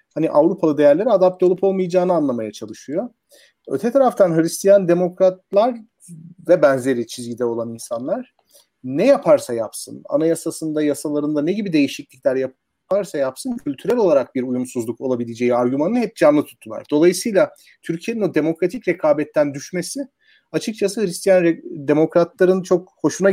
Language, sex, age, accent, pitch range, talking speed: Turkish, male, 40-59, native, 155-210 Hz, 125 wpm